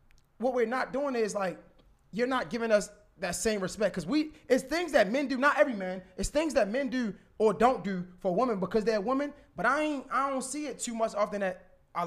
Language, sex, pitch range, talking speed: English, male, 195-250 Hz, 240 wpm